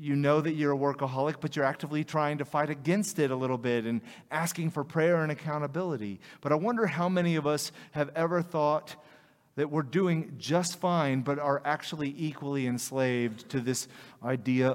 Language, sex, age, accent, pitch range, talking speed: English, male, 30-49, American, 130-150 Hz, 185 wpm